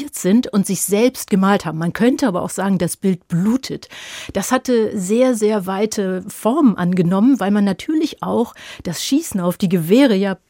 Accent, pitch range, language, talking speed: German, 180-225 Hz, German, 175 wpm